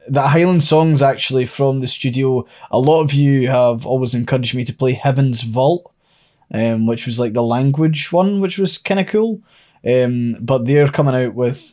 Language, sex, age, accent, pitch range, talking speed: English, male, 20-39, British, 120-145 Hz, 190 wpm